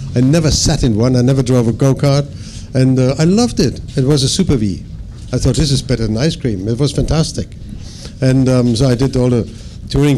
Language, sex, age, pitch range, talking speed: English, male, 60-79, 105-130 Hz, 230 wpm